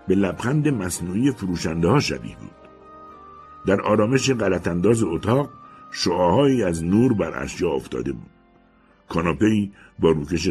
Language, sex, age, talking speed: Persian, male, 60-79, 120 wpm